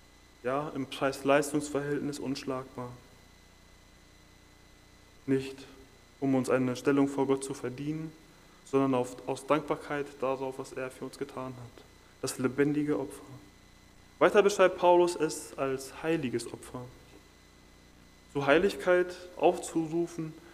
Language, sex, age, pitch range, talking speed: German, male, 20-39, 125-160 Hz, 105 wpm